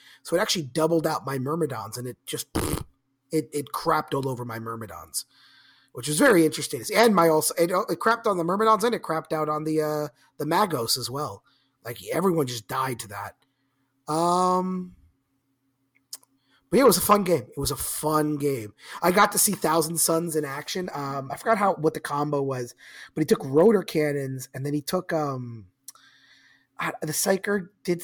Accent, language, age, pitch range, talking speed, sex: American, English, 30-49, 135-170 Hz, 195 wpm, male